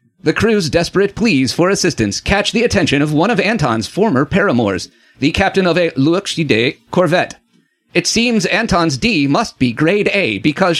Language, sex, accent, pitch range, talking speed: English, male, American, 135-200 Hz, 170 wpm